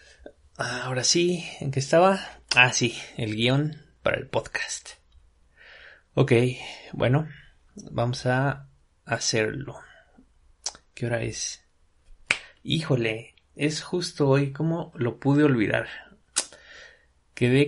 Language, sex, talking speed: Spanish, male, 100 wpm